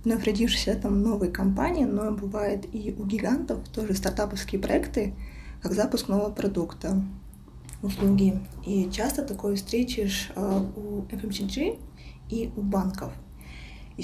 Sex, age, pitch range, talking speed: female, 20-39, 195-225 Hz, 130 wpm